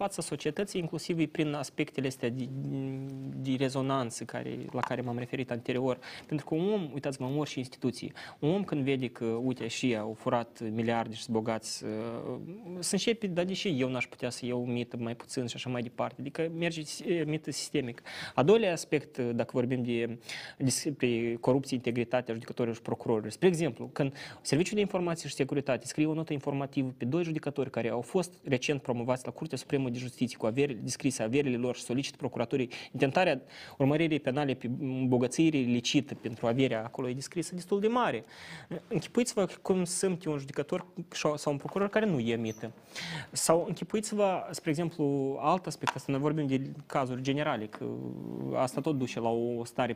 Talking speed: 180 wpm